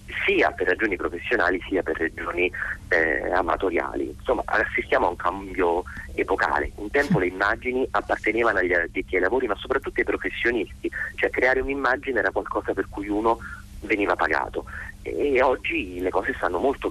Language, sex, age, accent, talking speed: Italian, male, 40-59, native, 155 wpm